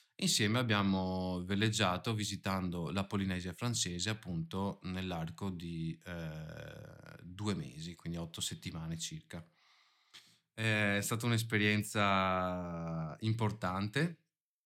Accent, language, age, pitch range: native, Italian, 30-49, 90-105 Hz